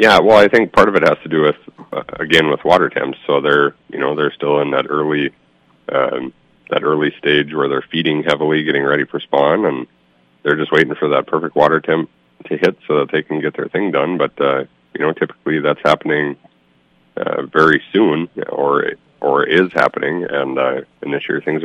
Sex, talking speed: male, 210 wpm